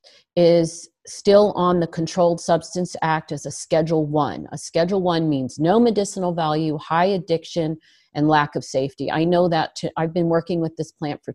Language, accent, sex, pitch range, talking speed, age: English, American, female, 155-185 Hz, 185 wpm, 40-59